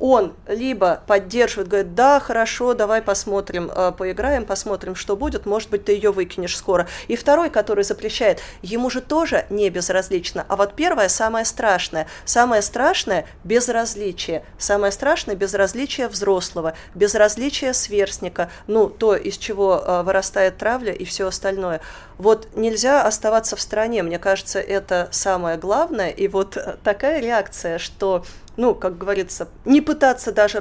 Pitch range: 185-225 Hz